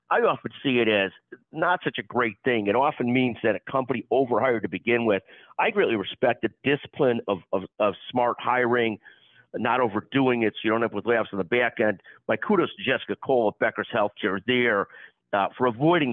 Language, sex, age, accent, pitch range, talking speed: English, male, 50-69, American, 110-130 Hz, 210 wpm